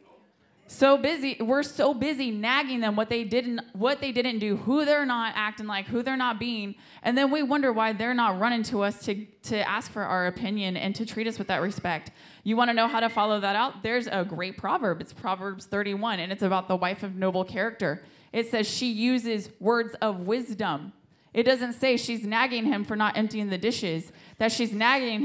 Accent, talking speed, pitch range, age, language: American, 215 wpm, 190-230 Hz, 20-39, English